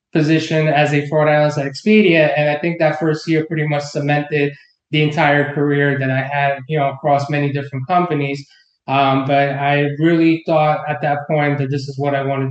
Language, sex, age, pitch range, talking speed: English, male, 20-39, 140-155 Hz, 200 wpm